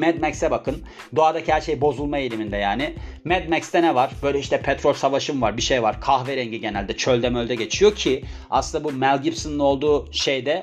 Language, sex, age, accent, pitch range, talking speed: Turkish, male, 30-49, native, 120-165 Hz, 185 wpm